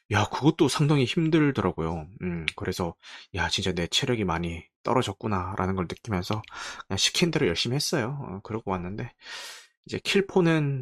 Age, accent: 20-39, native